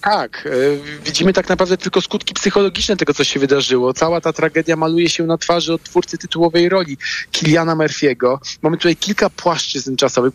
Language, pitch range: Polish, 145-185 Hz